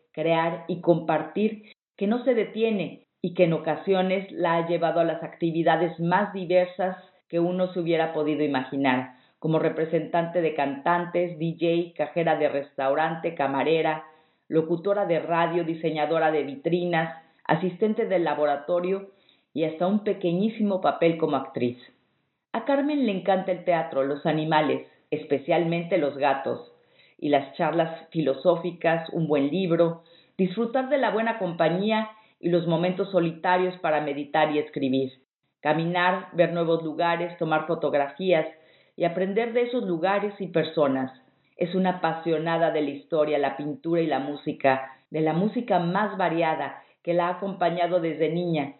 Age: 40-59